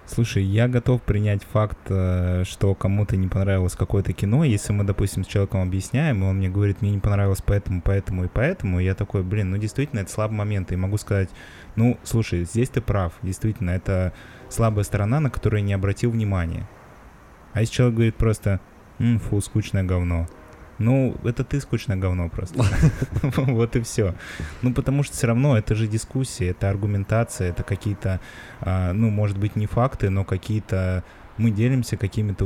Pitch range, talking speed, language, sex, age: 95-115 Hz, 175 wpm, Russian, male, 20-39